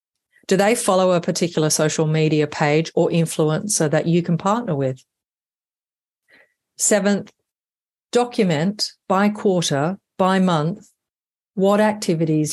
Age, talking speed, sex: 40-59, 110 wpm, female